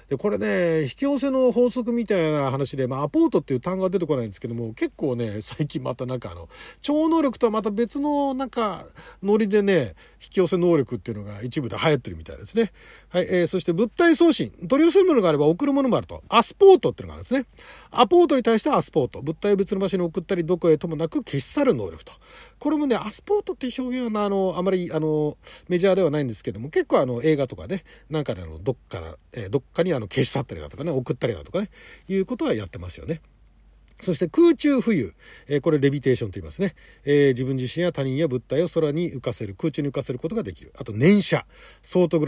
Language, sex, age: Japanese, male, 40-59